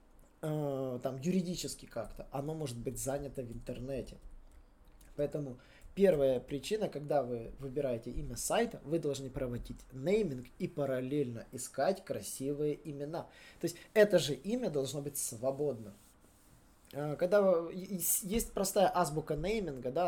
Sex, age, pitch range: male, 20-39, 135-180 Hz